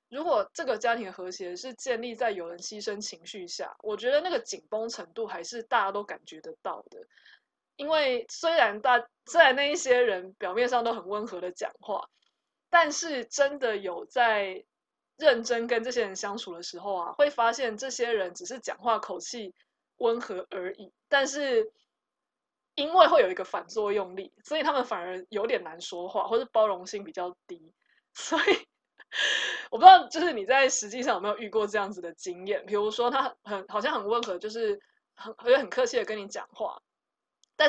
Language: Chinese